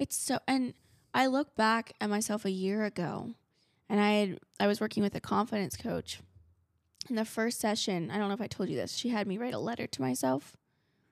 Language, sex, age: English, female, 10-29